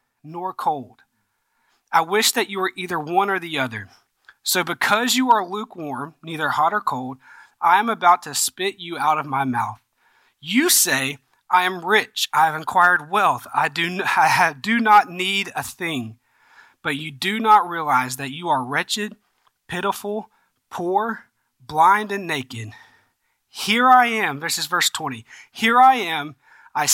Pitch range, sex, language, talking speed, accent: 145-195 Hz, male, English, 160 wpm, American